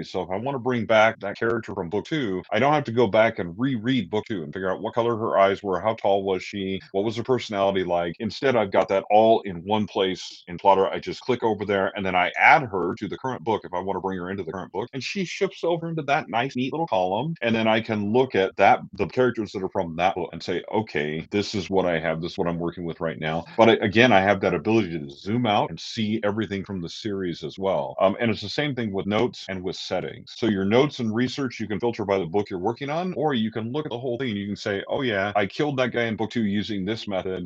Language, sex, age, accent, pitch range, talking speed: English, male, 30-49, American, 95-125 Hz, 285 wpm